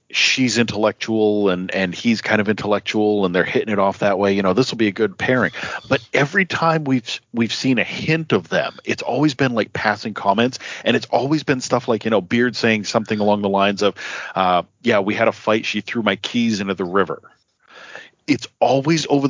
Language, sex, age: English, male, 40-59